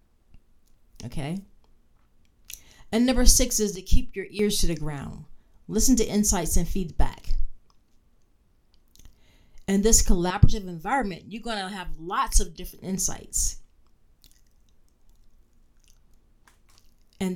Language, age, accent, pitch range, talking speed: English, 40-59, American, 165-215 Hz, 105 wpm